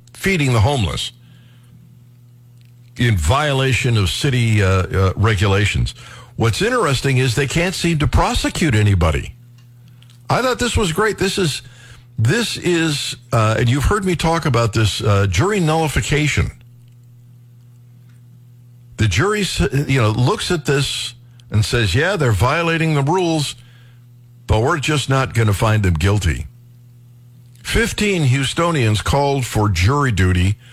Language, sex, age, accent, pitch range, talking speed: English, male, 60-79, American, 115-135 Hz, 135 wpm